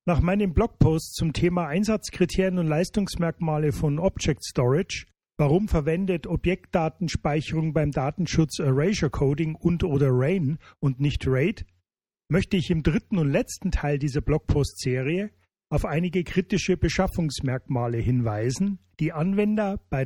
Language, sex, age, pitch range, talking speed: German, male, 40-59, 145-180 Hz, 125 wpm